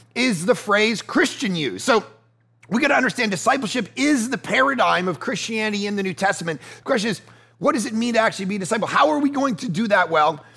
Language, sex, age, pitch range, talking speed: English, male, 30-49, 170-235 Hz, 220 wpm